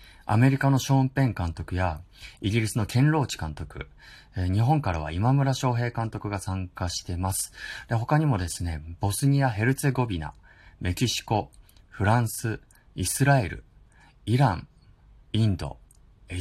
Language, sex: Japanese, male